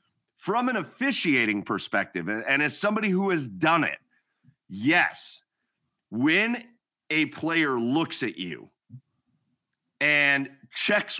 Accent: American